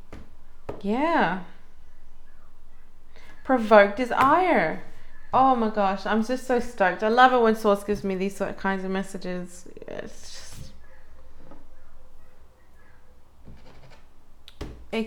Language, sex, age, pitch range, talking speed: English, female, 30-49, 180-220 Hz, 105 wpm